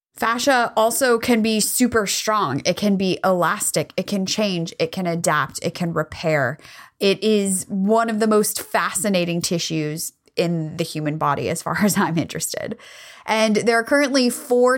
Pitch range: 165-205 Hz